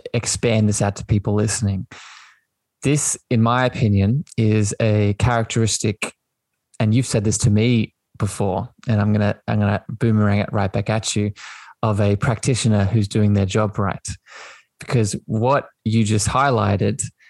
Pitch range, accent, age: 105-125 Hz, Australian, 20-39